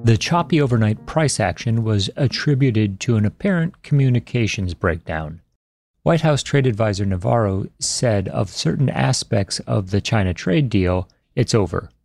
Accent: American